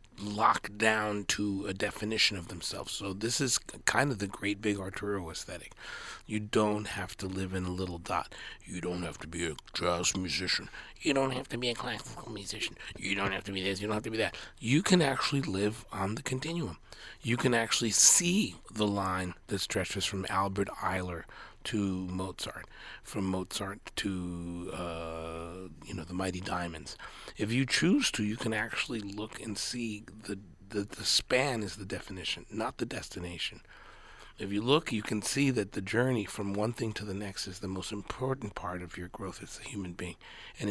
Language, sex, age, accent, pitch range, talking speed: English, male, 40-59, American, 95-110 Hz, 195 wpm